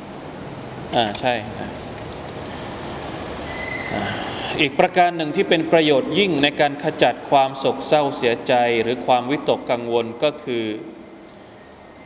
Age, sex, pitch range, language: 20-39, male, 130-160 Hz, Thai